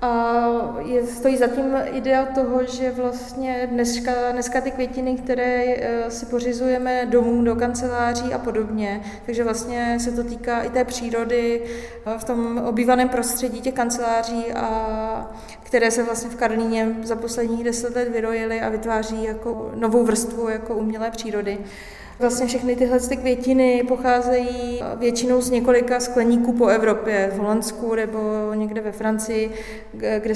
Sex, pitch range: female, 220-240 Hz